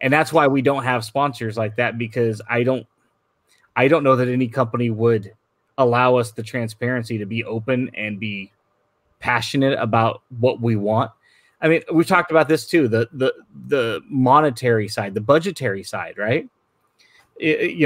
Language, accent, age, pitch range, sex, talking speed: English, American, 30-49, 115-145 Hz, male, 170 wpm